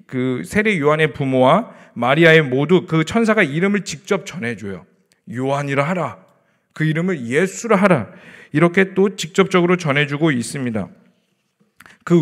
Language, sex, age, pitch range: Korean, male, 40-59, 160-220 Hz